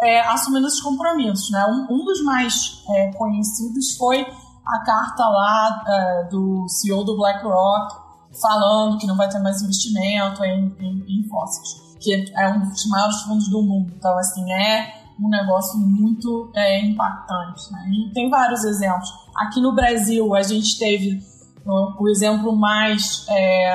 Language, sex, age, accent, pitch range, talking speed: Portuguese, female, 20-39, Brazilian, 200-245 Hz, 160 wpm